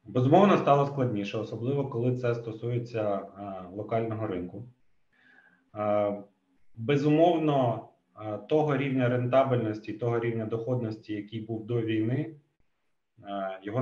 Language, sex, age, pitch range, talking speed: Ukrainian, male, 30-49, 105-125 Hz, 90 wpm